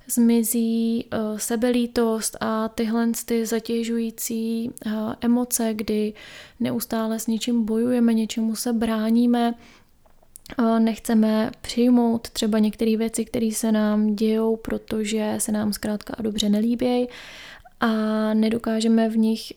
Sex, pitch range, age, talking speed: female, 220-235 Hz, 20-39, 115 wpm